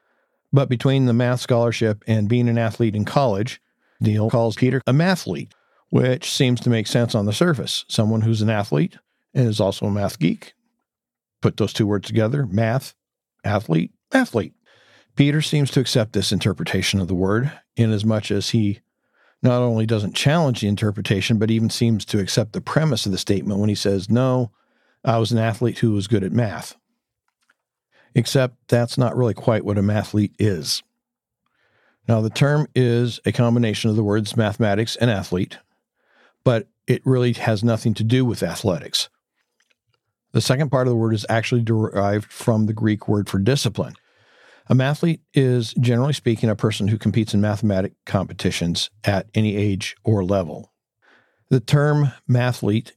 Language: English